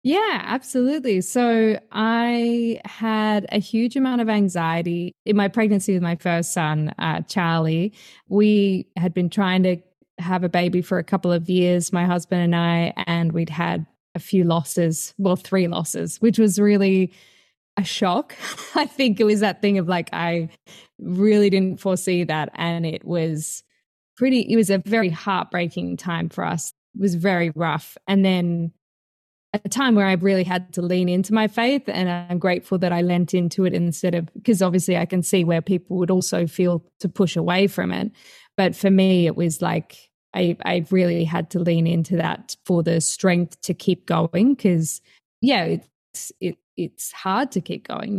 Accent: Australian